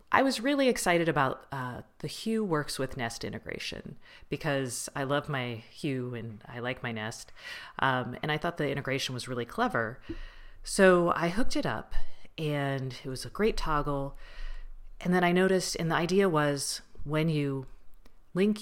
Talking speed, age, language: 170 wpm, 40-59, English